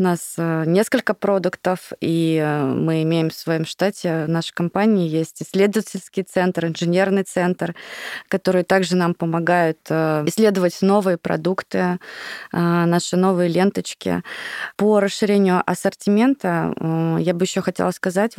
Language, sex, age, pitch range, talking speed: Russian, female, 20-39, 170-195 Hz, 115 wpm